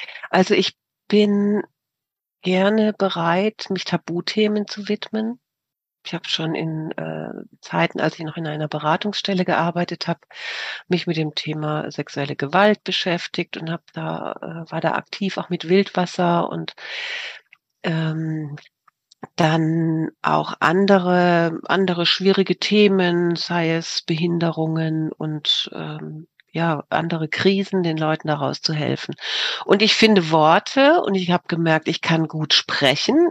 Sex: female